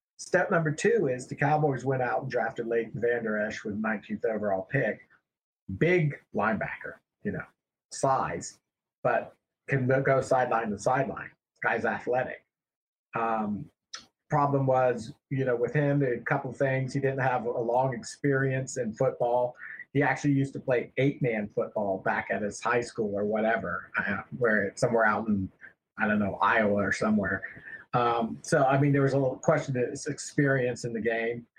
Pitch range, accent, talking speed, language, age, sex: 115-140 Hz, American, 175 wpm, English, 40-59, male